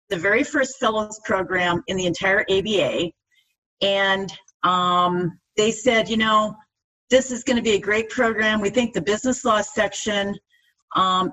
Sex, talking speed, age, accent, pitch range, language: female, 160 wpm, 40-59, American, 195-235 Hz, English